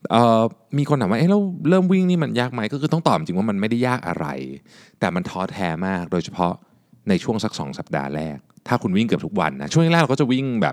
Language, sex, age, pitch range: Thai, male, 20-39, 115-175 Hz